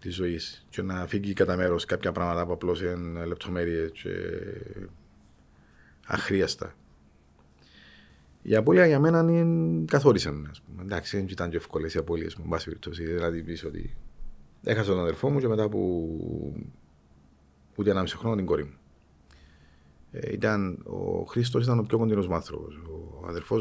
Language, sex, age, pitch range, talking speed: Greek, male, 40-59, 75-105 Hz, 140 wpm